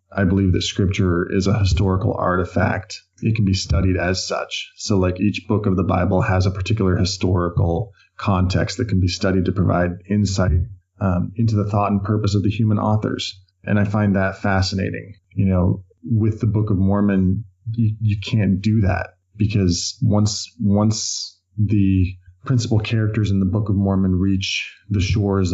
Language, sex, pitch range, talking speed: English, male, 90-105 Hz, 175 wpm